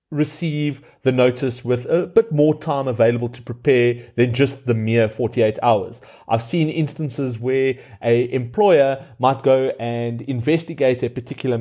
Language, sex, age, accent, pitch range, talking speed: English, male, 30-49, South African, 120-155 Hz, 150 wpm